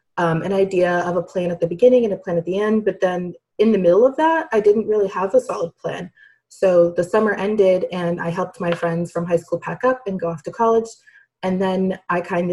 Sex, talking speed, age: female, 250 wpm, 20-39